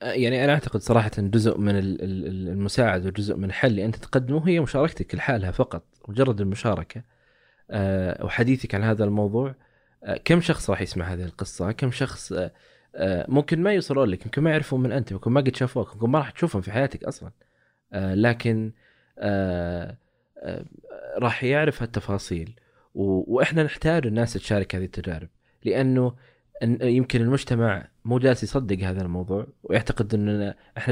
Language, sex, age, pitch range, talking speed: Arabic, male, 20-39, 100-125 Hz, 140 wpm